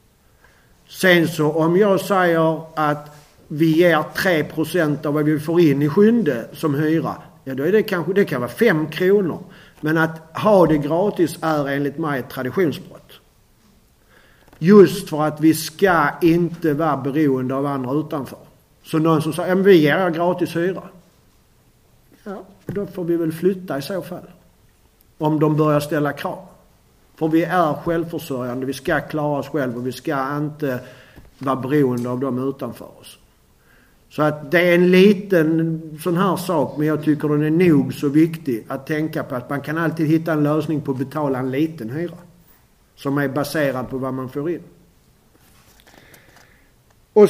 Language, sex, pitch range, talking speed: Swedish, male, 145-170 Hz, 165 wpm